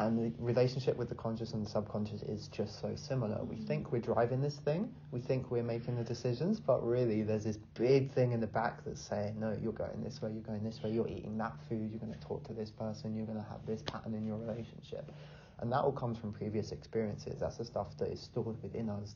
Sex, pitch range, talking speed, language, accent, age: male, 105-130 Hz, 245 wpm, English, British, 30-49